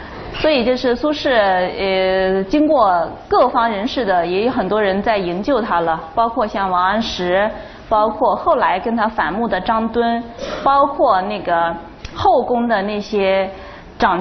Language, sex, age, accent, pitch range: Chinese, female, 20-39, native, 200-275 Hz